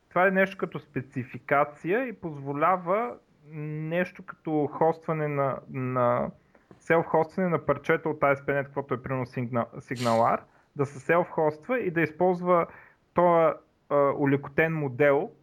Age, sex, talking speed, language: 30-49, male, 125 wpm, Bulgarian